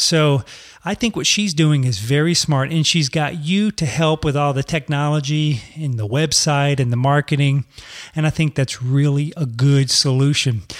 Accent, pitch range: American, 140-180 Hz